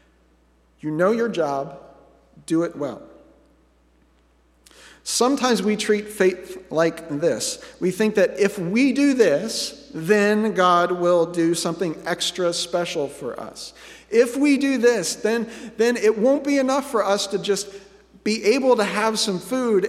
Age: 50-69